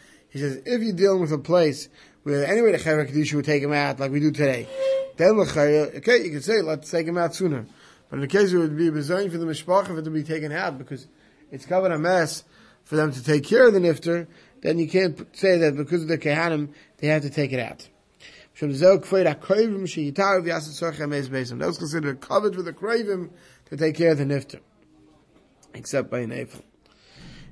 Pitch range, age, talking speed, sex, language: 145-175 Hz, 30-49, 205 wpm, male, English